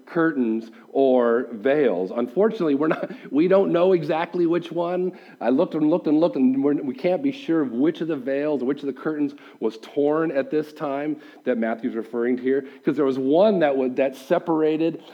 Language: English